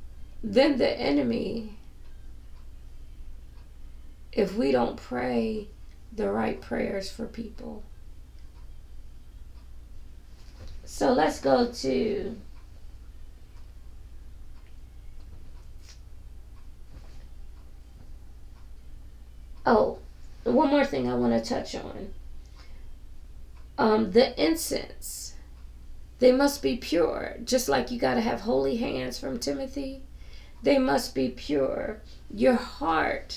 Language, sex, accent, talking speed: English, female, American, 85 wpm